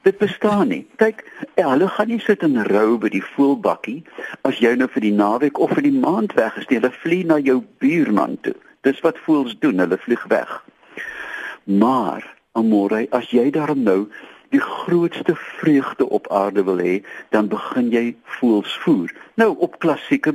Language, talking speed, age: Dutch, 170 wpm, 50-69